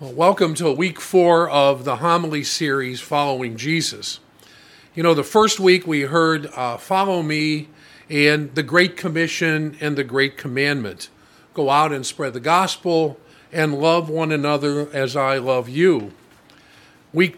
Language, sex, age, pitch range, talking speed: English, male, 50-69, 145-180 Hz, 150 wpm